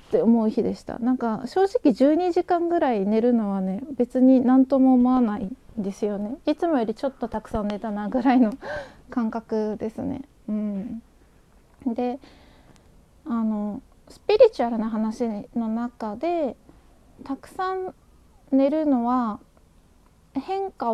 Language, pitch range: Japanese, 225-275 Hz